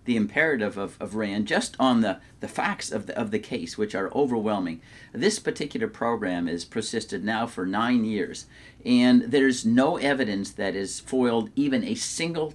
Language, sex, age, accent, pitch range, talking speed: English, male, 50-69, American, 115-180 Hz, 175 wpm